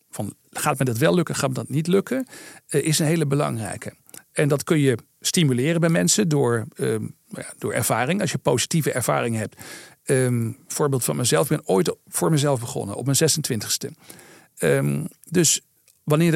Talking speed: 175 wpm